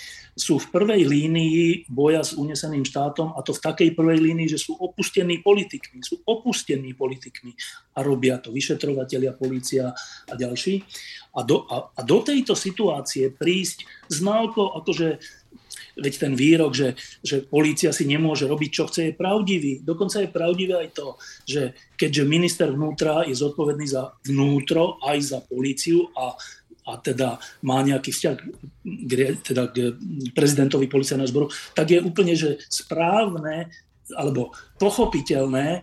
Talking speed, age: 145 wpm, 40-59